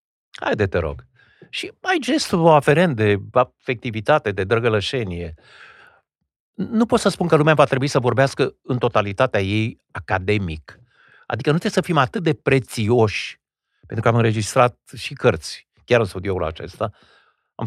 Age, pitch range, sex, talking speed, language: 50-69, 100-140 Hz, male, 155 wpm, Romanian